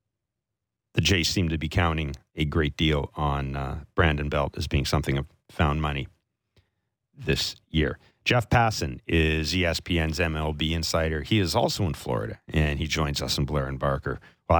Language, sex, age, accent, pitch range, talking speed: English, male, 40-59, American, 85-130 Hz, 170 wpm